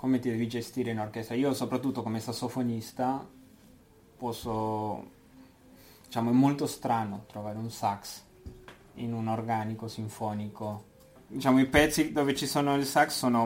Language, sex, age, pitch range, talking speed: Italian, male, 20-39, 110-130 Hz, 140 wpm